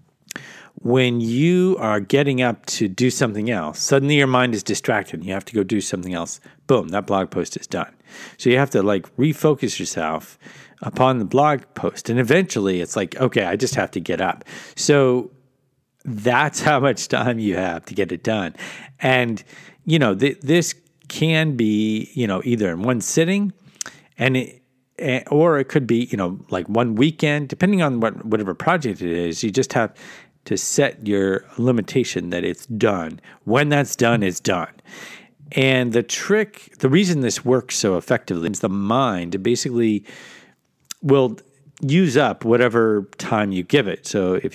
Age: 50-69